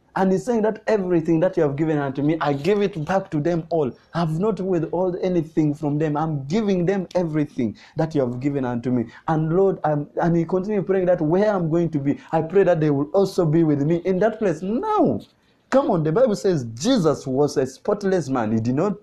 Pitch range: 155-220 Hz